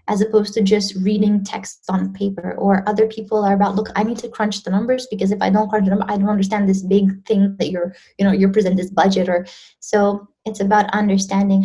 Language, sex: English, female